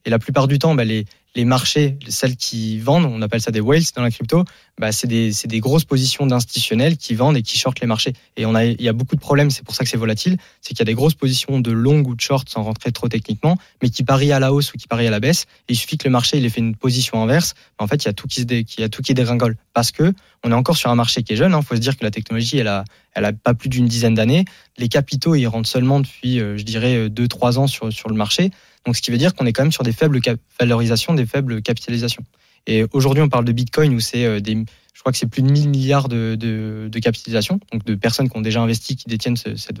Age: 20-39